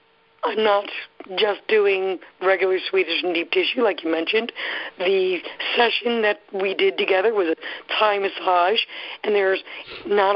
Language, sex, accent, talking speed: English, female, American, 145 wpm